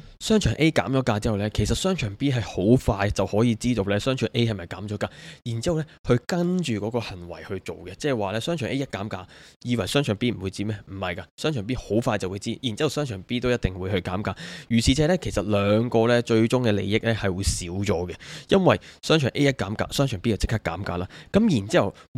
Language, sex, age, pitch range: Chinese, male, 20-39, 100-125 Hz